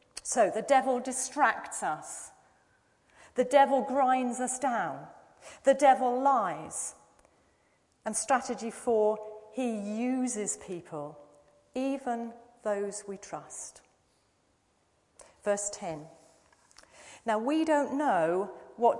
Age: 40-59